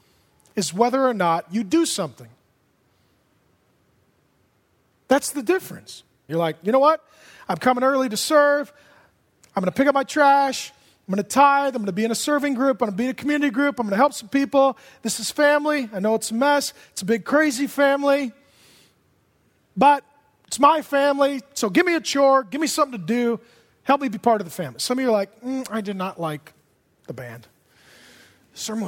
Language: English